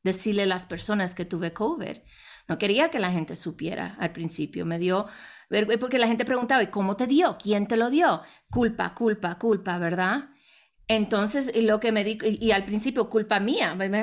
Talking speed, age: 195 wpm, 30-49